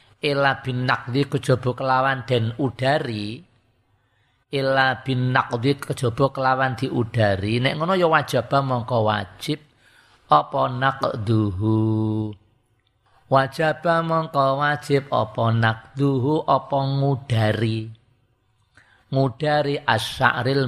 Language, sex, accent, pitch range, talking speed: Indonesian, male, native, 110-140 Hz, 85 wpm